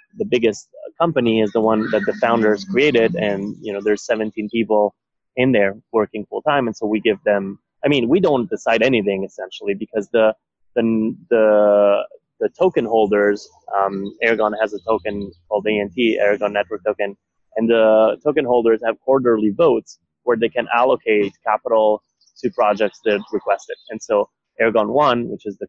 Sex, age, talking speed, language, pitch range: male, 20-39, 175 wpm, English, 100-115 Hz